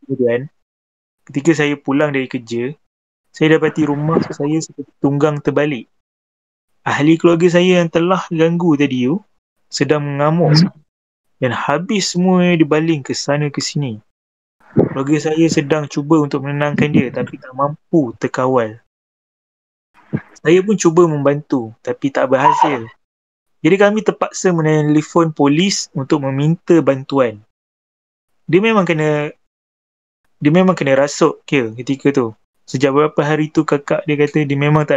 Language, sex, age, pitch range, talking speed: Malay, male, 20-39, 135-165 Hz, 130 wpm